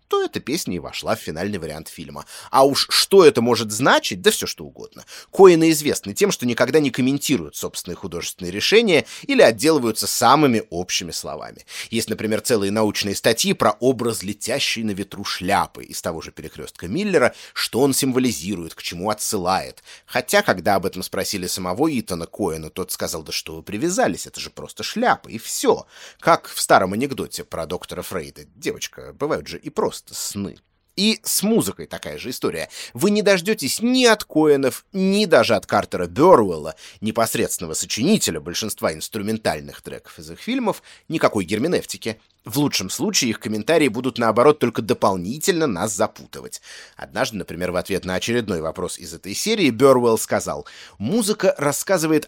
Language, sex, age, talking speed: Russian, male, 30-49, 160 wpm